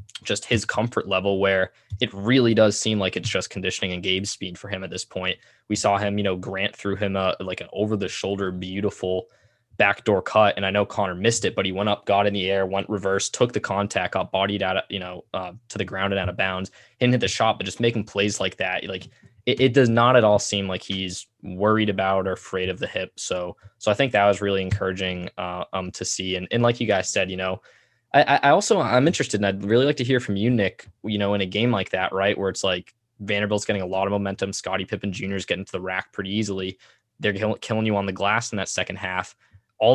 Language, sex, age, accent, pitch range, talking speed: English, male, 20-39, American, 95-115 Hz, 255 wpm